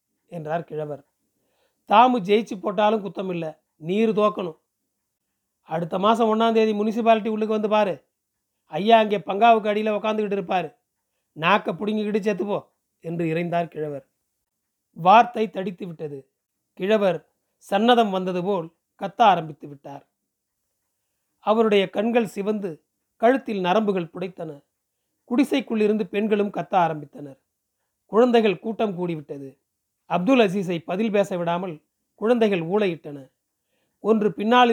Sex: male